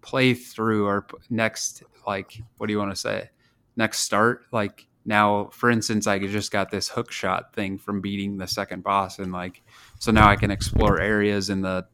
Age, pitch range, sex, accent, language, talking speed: 20-39, 100-110 Hz, male, American, English, 195 wpm